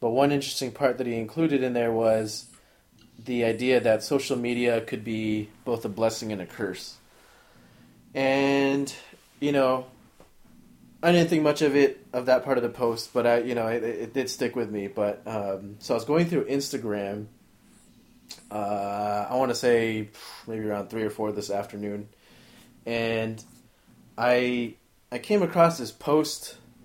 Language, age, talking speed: English, 20-39, 170 wpm